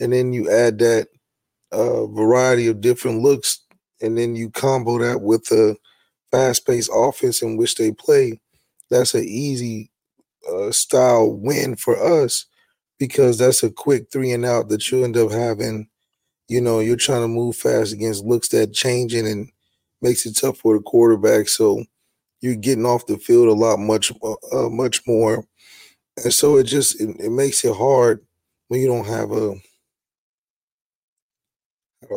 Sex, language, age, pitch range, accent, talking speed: male, English, 30-49, 115-140 Hz, American, 160 wpm